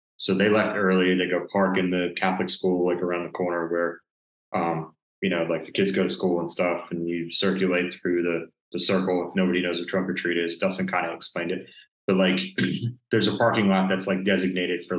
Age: 20-39